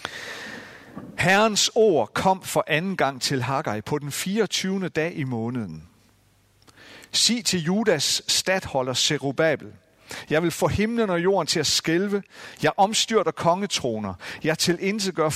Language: Danish